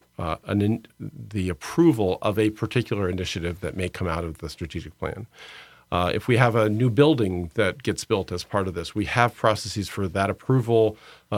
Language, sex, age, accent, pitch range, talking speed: English, male, 50-69, American, 90-115 Hz, 190 wpm